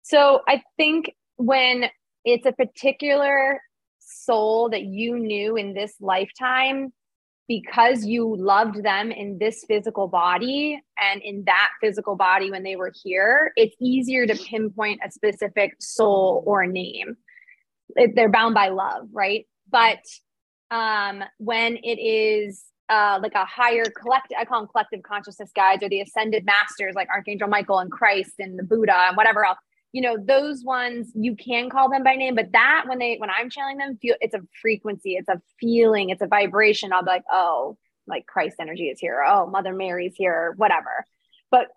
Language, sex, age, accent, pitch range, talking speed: English, female, 20-39, American, 200-240 Hz, 175 wpm